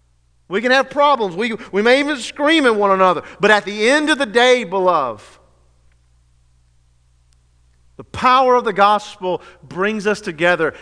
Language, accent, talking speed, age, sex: English, American, 155 wpm, 50-69, male